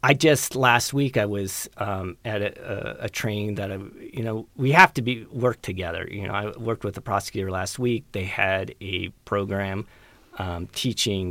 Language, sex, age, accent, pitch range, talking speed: English, male, 40-59, American, 95-110 Hz, 195 wpm